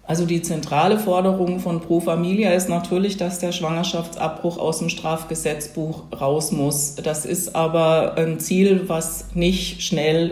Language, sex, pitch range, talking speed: German, female, 170-195 Hz, 145 wpm